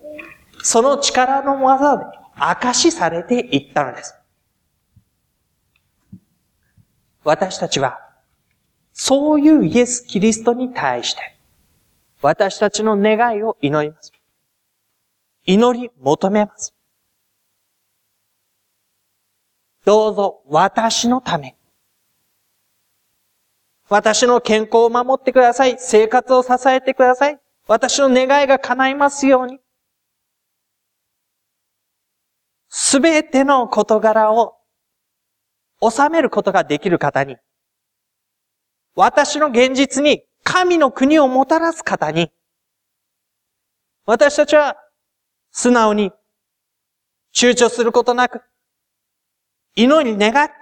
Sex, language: male, Japanese